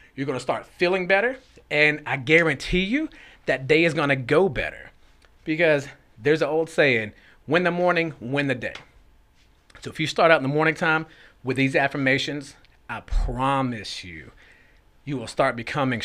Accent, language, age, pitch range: American, English, 30-49, 120-155 Hz